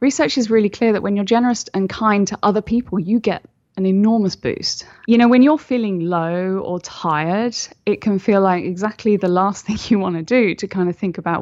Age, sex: 10-29, female